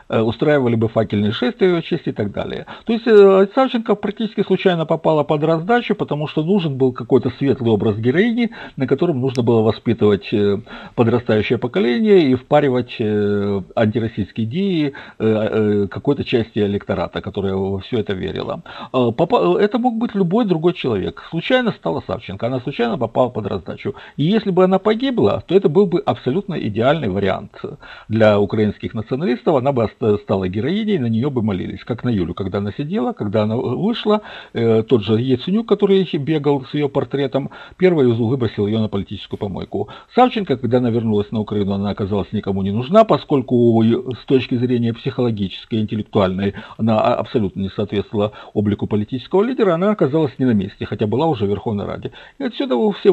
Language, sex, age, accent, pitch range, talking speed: Russian, male, 50-69, native, 110-175 Hz, 160 wpm